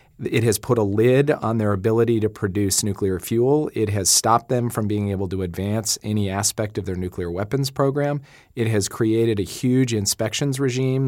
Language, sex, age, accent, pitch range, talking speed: English, male, 40-59, American, 100-120 Hz, 190 wpm